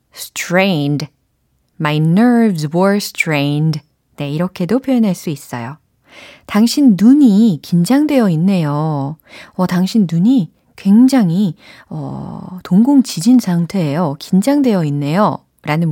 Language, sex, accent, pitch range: Korean, female, native, 155-250 Hz